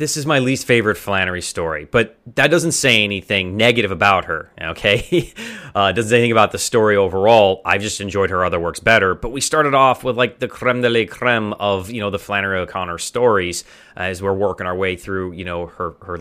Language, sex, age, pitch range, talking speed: English, male, 30-49, 90-115 Hz, 220 wpm